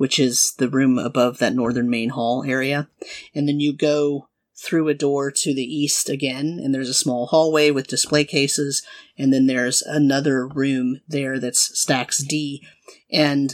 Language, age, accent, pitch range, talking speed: English, 30-49, American, 135-155 Hz, 175 wpm